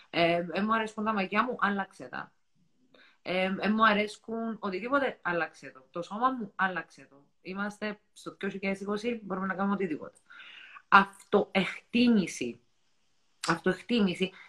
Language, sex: Greek, female